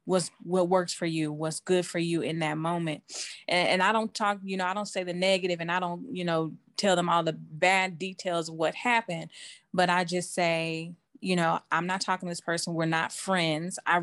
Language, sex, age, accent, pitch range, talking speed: English, female, 20-39, American, 165-190 Hz, 230 wpm